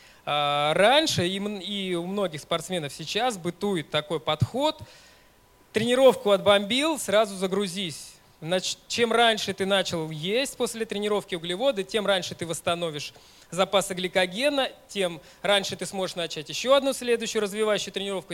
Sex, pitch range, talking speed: male, 160-205 Hz, 120 wpm